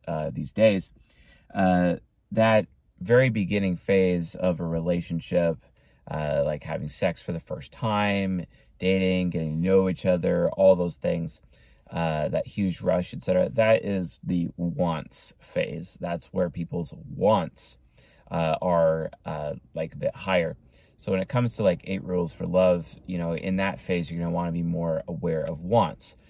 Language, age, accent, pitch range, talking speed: English, 30-49, American, 85-95 Hz, 165 wpm